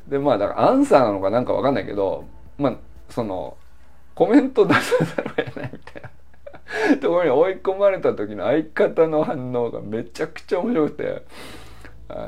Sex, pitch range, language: male, 100-150 Hz, Japanese